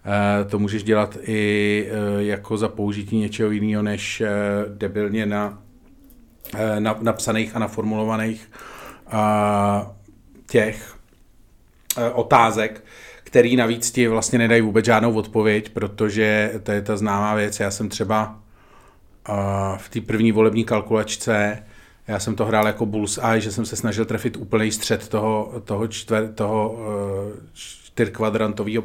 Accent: native